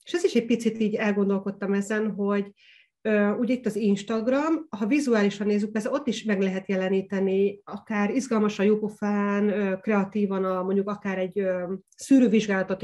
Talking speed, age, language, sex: 140 wpm, 30-49, Hungarian, female